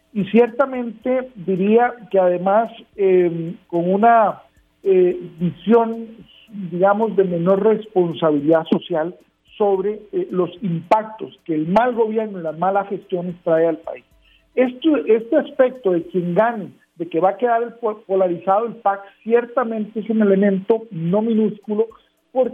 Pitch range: 180-230 Hz